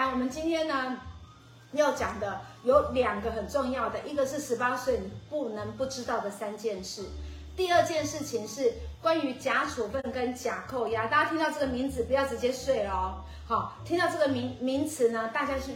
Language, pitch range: Chinese, 225-300 Hz